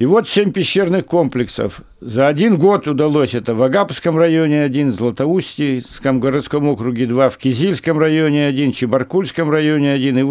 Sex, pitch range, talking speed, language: male, 120-155 Hz, 175 wpm, Russian